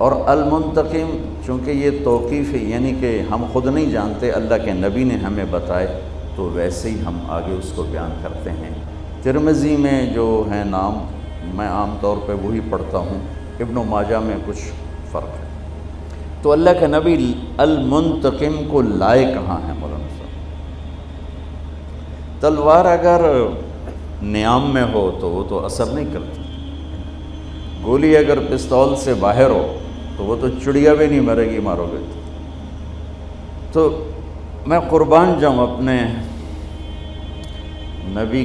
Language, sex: Urdu, male